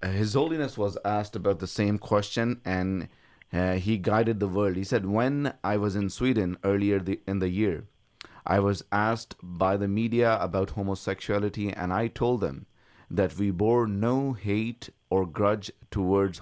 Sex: male